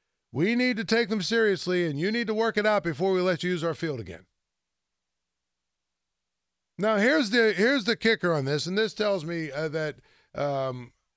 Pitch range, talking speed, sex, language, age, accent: 160-215 Hz, 195 wpm, male, English, 50-69, American